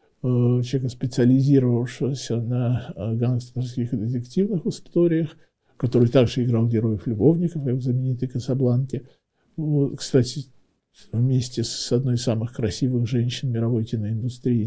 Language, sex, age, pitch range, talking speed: Russian, male, 50-69, 125-165 Hz, 100 wpm